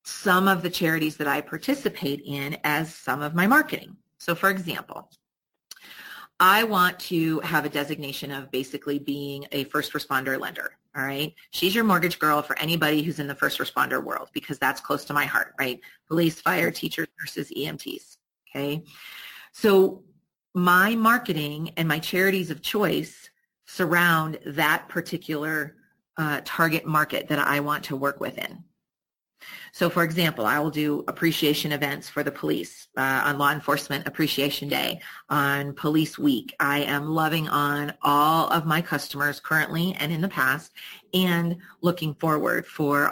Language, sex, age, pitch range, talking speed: English, female, 30-49, 145-175 Hz, 160 wpm